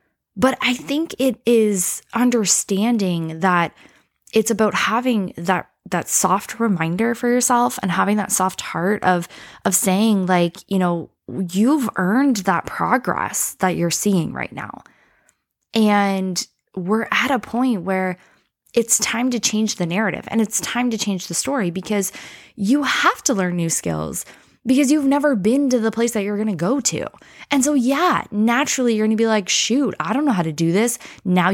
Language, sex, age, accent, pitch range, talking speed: English, female, 10-29, American, 185-240 Hz, 175 wpm